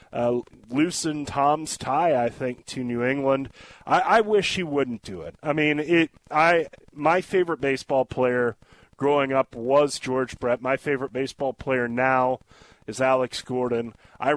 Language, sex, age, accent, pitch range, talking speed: English, male, 30-49, American, 125-150 Hz, 160 wpm